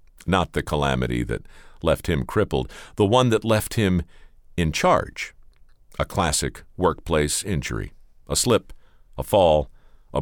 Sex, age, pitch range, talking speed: male, 50-69, 75-110 Hz, 135 wpm